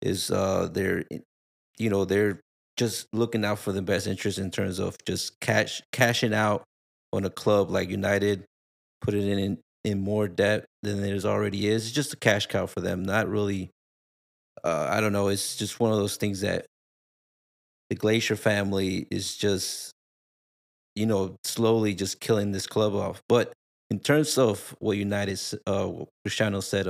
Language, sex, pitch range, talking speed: English, male, 95-110 Hz, 170 wpm